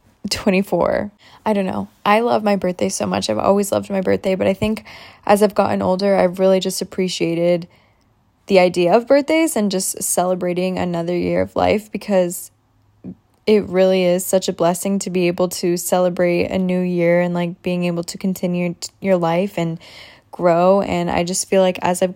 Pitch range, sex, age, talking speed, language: 180-205 Hz, female, 10-29, 185 wpm, English